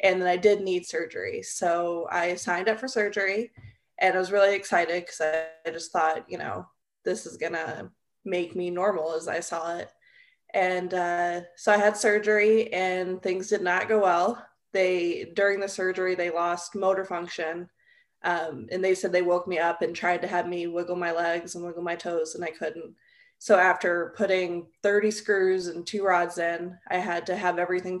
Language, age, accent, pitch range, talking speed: English, 20-39, American, 175-200 Hz, 195 wpm